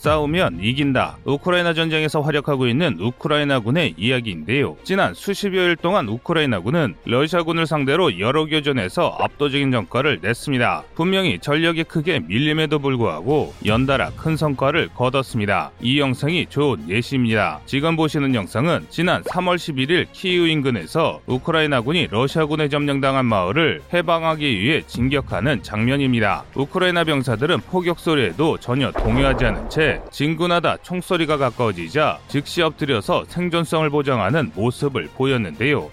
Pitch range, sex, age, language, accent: 125-165 Hz, male, 30-49, Korean, native